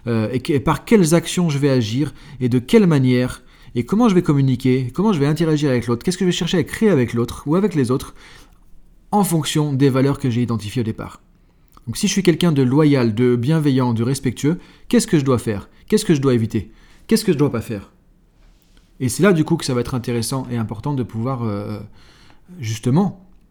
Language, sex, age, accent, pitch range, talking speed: French, male, 30-49, French, 125-160 Hz, 230 wpm